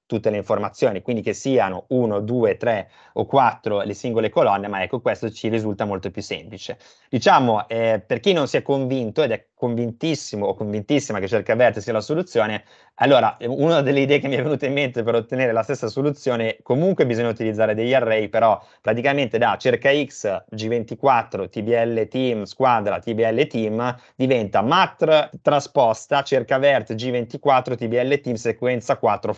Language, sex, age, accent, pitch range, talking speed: Italian, male, 30-49, native, 110-135 Hz, 170 wpm